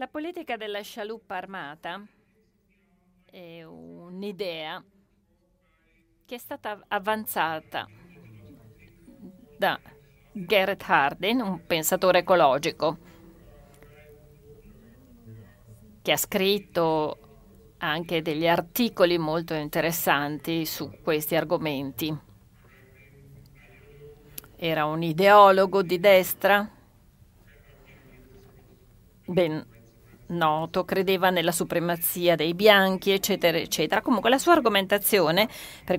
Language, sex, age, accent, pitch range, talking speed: Italian, female, 40-59, native, 160-205 Hz, 80 wpm